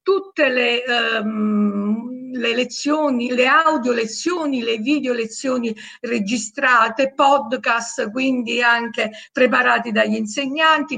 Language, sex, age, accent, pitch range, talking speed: Italian, female, 50-69, native, 225-290 Hz, 100 wpm